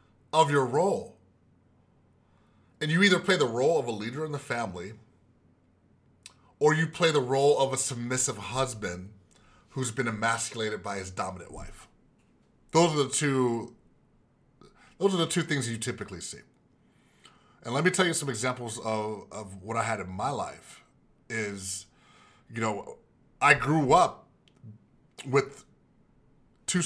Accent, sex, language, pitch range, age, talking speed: American, male, English, 105-150 Hz, 30-49, 145 wpm